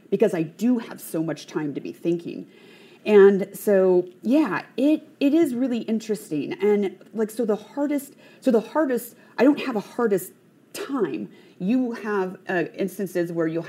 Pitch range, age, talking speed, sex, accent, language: 170-215 Hz, 30-49, 165 wpm, female, American, English